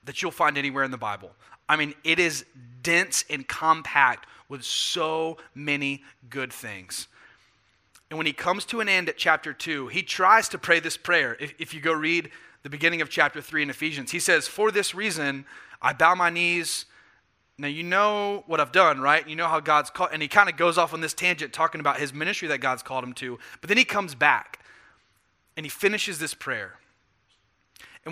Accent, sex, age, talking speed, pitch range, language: American, male, 30-49, 205 wpm, 145-195 Hz, English